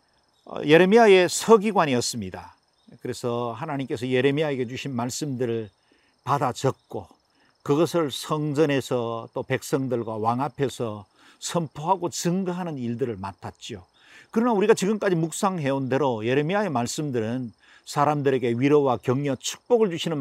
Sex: male